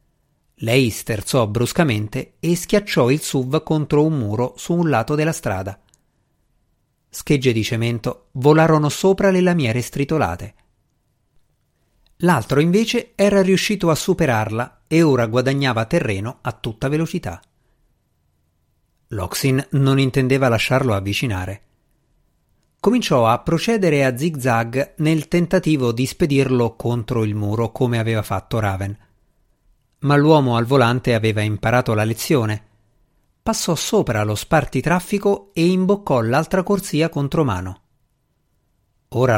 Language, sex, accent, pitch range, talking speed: Italian, male, native, 115-165 Hz, 115 wpm